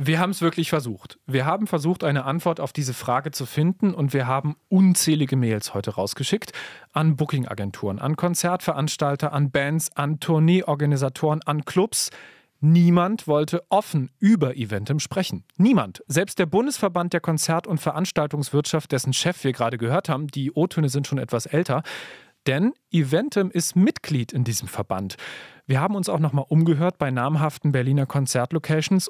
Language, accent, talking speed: German, German, 155 wpm